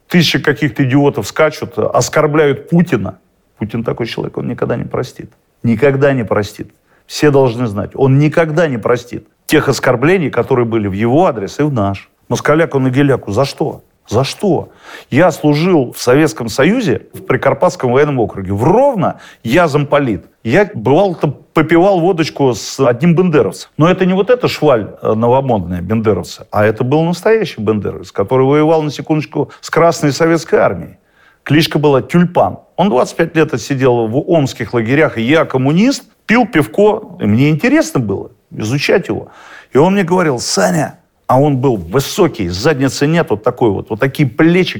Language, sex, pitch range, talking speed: Russian, male, 125-165 Hz, 160 wpm